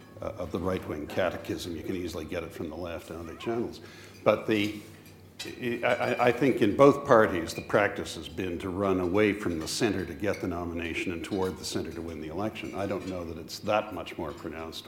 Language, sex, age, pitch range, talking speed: English, male, 60-79, 90-110 Hz, 220 wpm